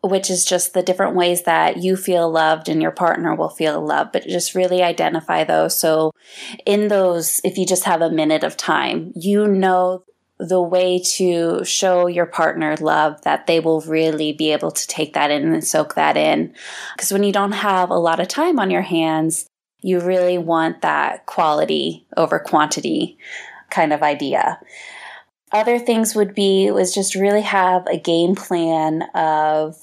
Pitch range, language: 165-200 Hz, English